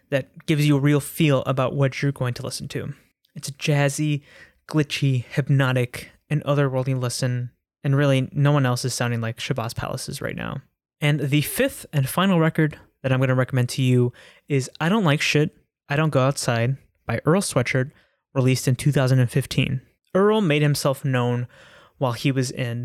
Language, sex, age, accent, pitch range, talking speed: English, male, 20-39, American, 125-145 Hz, 180 wpm